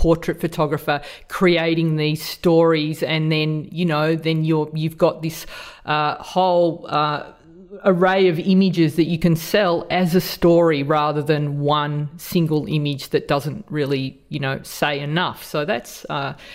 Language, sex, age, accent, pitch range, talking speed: English, female, 30-49, Australian, 150-175 Hz, 150 wpm